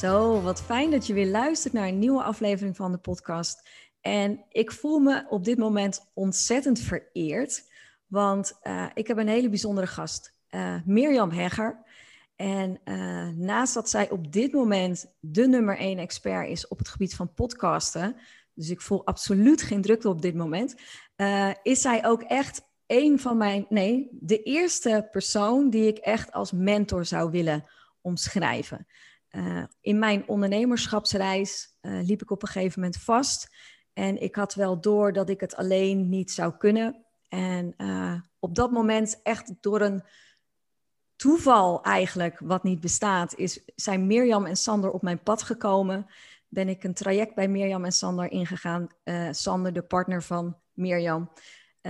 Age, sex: 30-49, female